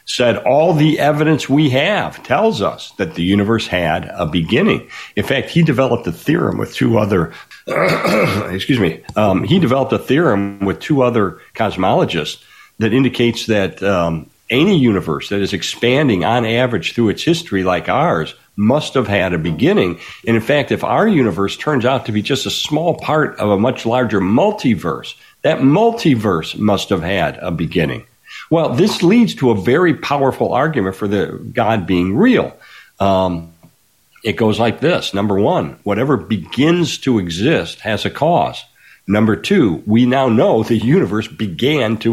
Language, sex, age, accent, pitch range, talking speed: English, male, 60-79, American, 100-140 Hz, 165 wpm